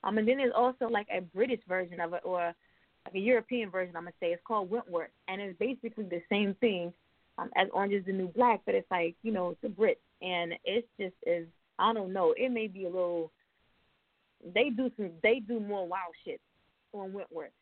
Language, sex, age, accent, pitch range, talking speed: English, female, 20-39, American, 185-235 Hz, 225 wpm